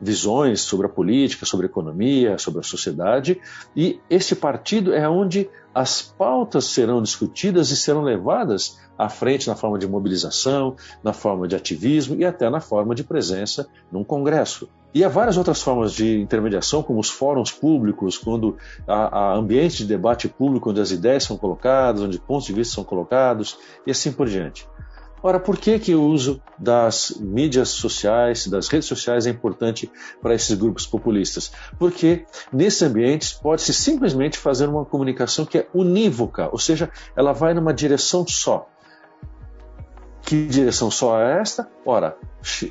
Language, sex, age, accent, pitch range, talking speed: Portuguese, male, 60-79, Brazilian, 110-155 Hz, 160 wpm